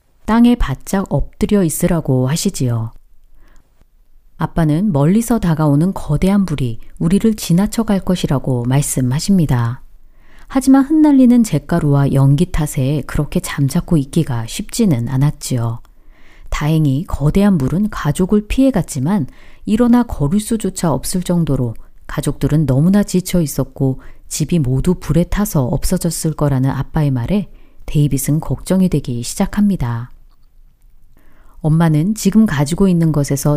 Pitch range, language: 135-195 Hz, Korean